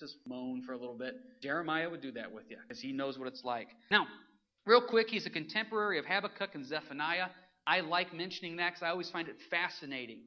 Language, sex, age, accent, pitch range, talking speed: English, male, 40-59, American, 155-225 Hz, 220 wpm